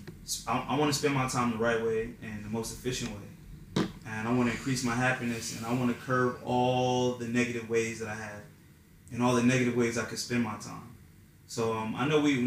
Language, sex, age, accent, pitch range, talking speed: English, male, 20-39, American, 110-125 Hz, 235 wpm